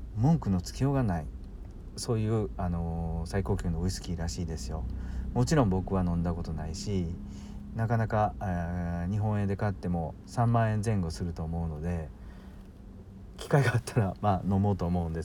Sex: male